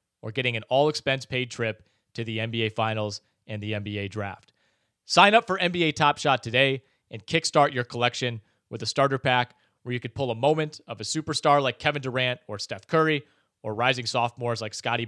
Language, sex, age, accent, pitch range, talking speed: English, male, 30-49, American, 115-145 Hz, 200 wpm